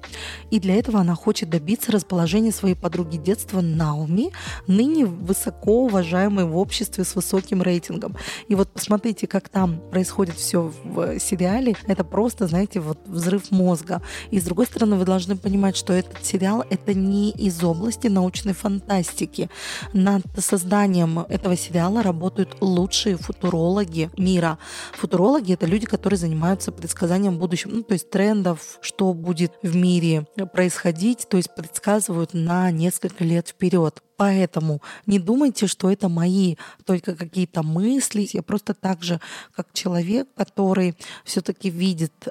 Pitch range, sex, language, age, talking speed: 175-200 Hz, female, Russian, 20-39, 140 wpm